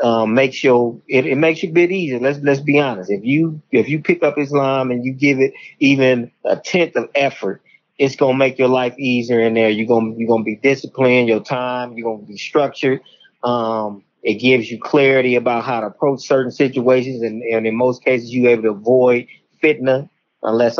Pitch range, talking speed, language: 120-145 Hz, 210 wpm, English